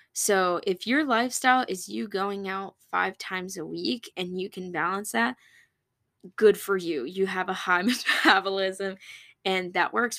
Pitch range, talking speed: 180-215 Hz, 165 wpm